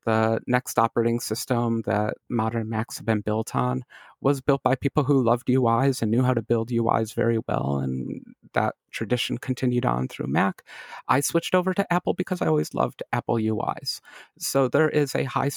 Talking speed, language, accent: 190 wpm, English, American